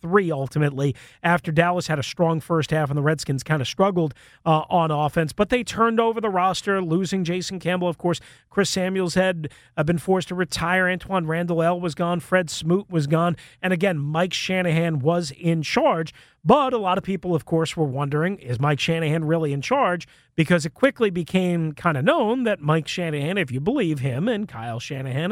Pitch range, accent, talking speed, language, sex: 145-180 Hz, American, 200 wpm, English, male